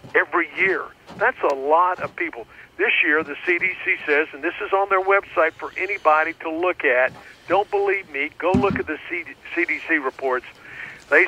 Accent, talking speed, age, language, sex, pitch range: American, 180 wpm, 60-79, English, male, 150-195 Hz